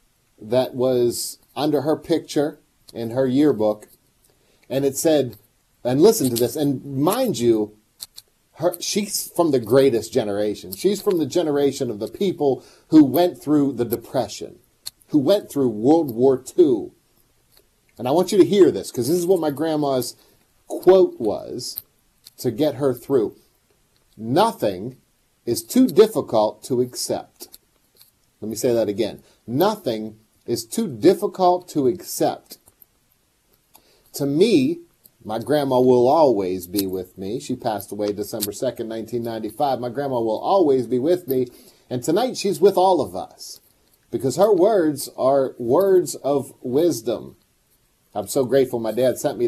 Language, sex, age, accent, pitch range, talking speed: English, male, 40-59, American, 120-180 Hz, 145 wpm